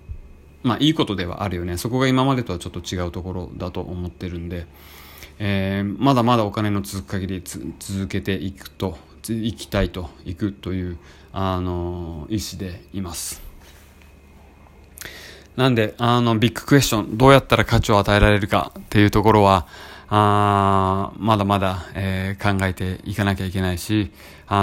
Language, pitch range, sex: Japanese, 85-105 Hz, male